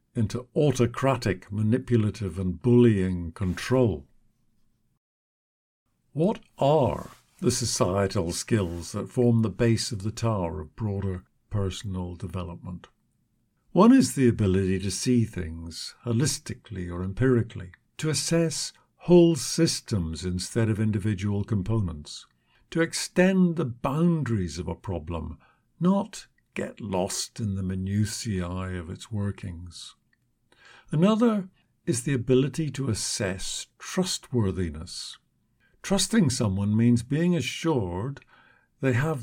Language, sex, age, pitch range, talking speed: English, male, 50-69, 95-145 Hz, 105 wpm